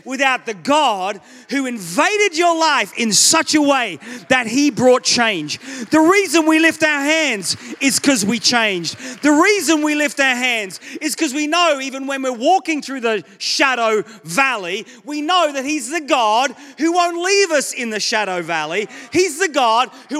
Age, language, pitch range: 30-49, English, 230-300 Hz